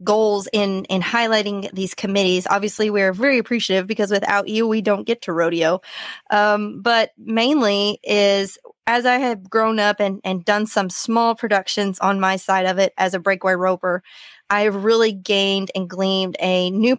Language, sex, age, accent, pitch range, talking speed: English, female, 20-39, American, 185-210 Hz, 175 wpm